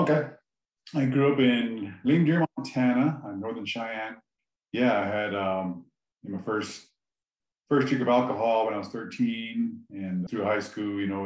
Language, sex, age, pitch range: English, male, 30-49, 95-120 Hz